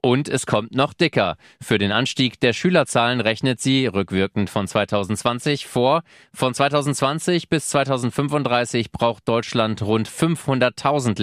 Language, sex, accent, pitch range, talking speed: German, male, German, 110-130 Hz, 130 wpm